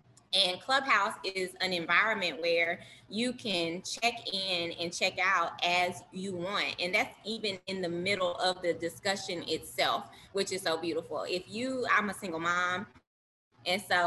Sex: female